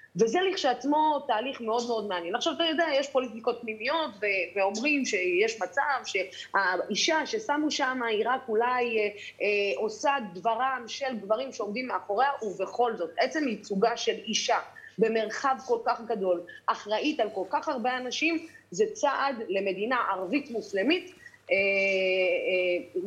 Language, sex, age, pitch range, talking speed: Hebrew, female, 30-49, 190-265 Hz, 140 wpm